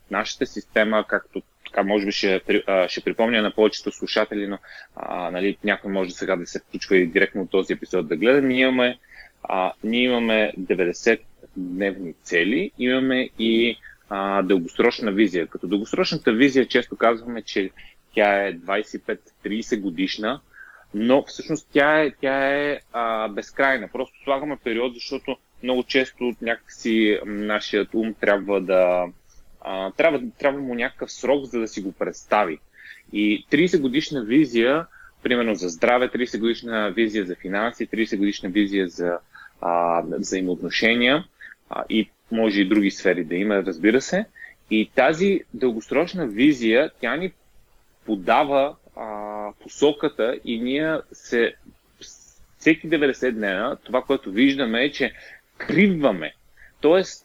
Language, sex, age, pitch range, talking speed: Bulgarian, male, 30-49, 100-135 Hz, 135 wpm